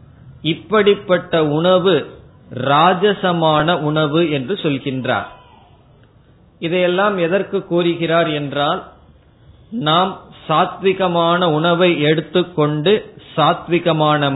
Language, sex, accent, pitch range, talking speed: Tamil, male, native, 145-180 Hz, 65 wpm